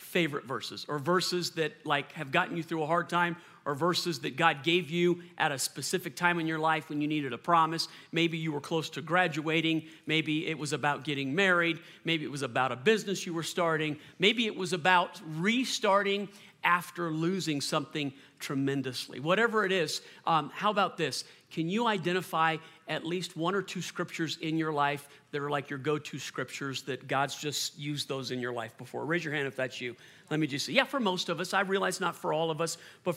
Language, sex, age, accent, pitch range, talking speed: English, male, 40-59, American, 155-190 Hz, 215 wpm